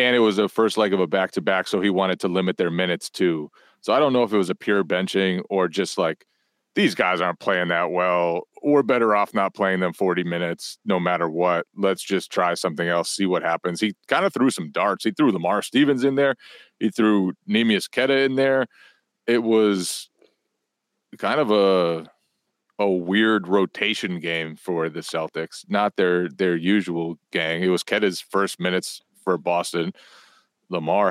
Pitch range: 85-105 Hz